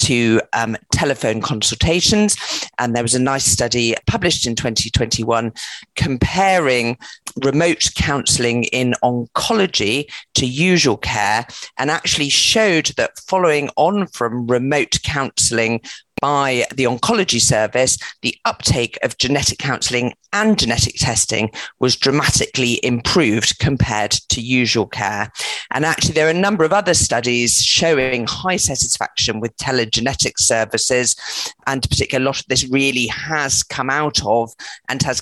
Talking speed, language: 130 wpm, English